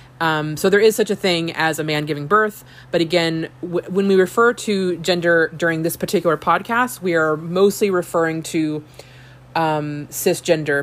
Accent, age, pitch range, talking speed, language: American, 20-39, 150-180 Hz, 170 wpm, English